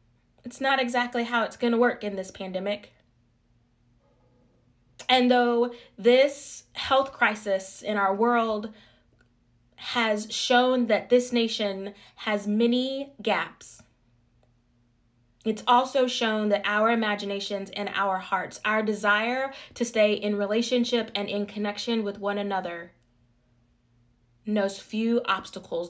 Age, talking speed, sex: 20-39, 120 wpm, female